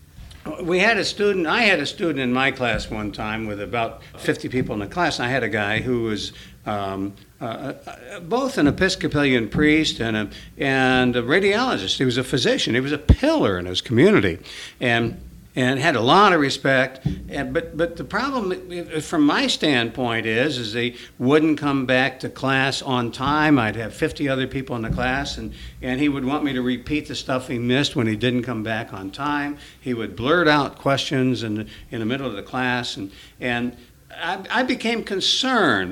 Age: 60-79